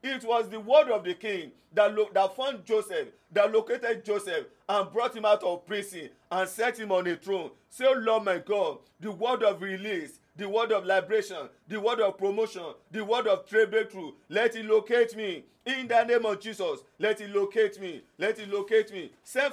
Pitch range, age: 200-235 Hz, 40-59